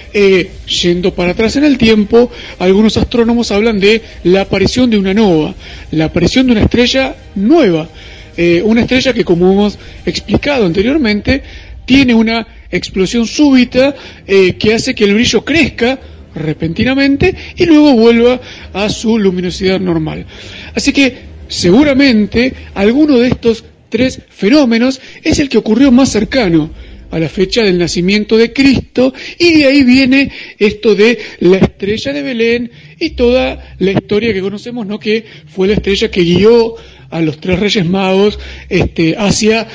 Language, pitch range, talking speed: Spanish, 190-255 Hz, 150 wpm